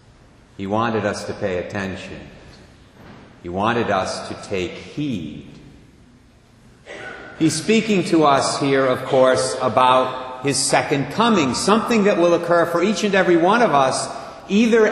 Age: 50-69